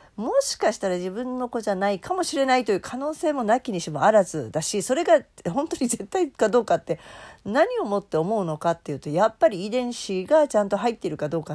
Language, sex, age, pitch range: Japanese, female, 40-59, 155-235 Hz